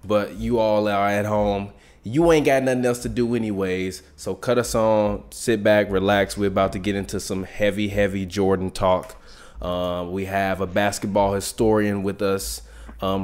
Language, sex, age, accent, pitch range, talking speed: English, male, 20-39, American, 95-105 Hz, 180 wpm